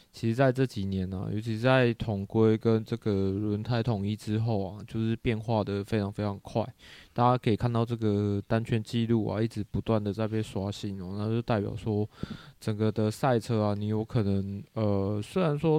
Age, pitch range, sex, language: 20-39, 100-120 Hz, male, Chinese